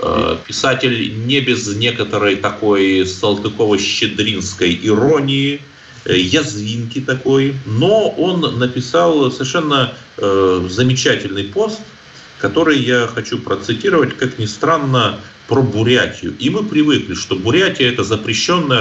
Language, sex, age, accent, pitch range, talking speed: Russian, male, 30-49, native, 95-135 Hz, 100 wpm